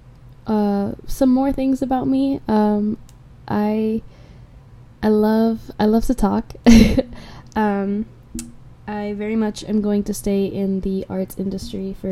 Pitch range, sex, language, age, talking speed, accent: 130-205 Hz, female, English, 10-29, 135 wpm, American